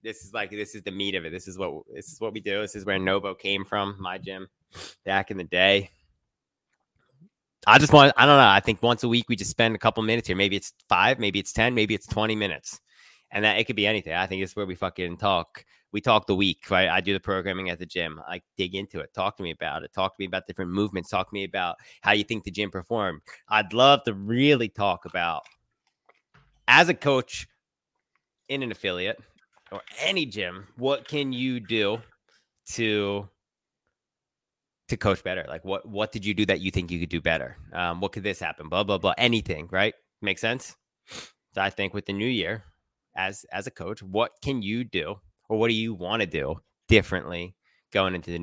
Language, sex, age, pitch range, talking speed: English, male, 20-39, 95-115 Hz, 225 wpm